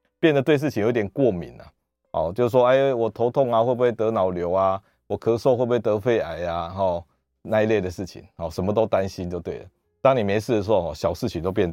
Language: Chinese